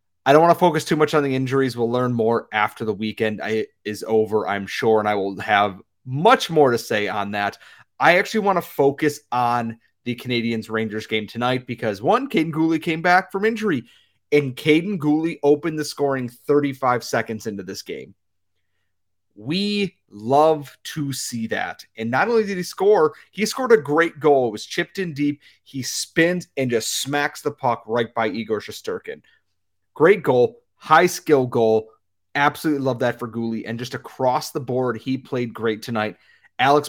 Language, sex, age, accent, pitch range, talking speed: English, male, 30-49, American, 115-155 Hz, 180 wpm